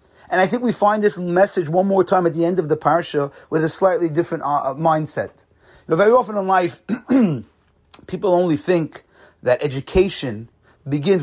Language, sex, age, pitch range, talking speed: English, male, 30-49, 165-220 Hz, 180 wpm